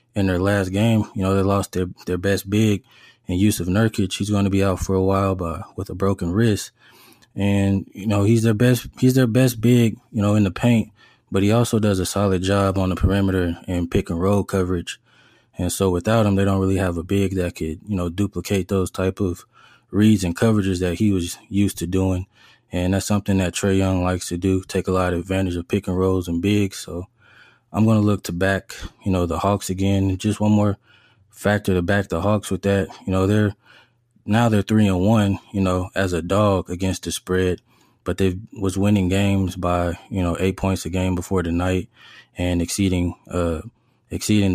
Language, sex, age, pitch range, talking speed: English, male, 20-39, 90-105 Hz, 215 wpm